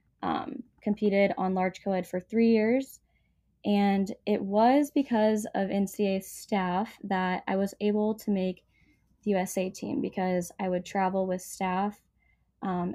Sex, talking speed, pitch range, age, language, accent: female, 145 wpm, 190-225 Hz, 10-29, English, American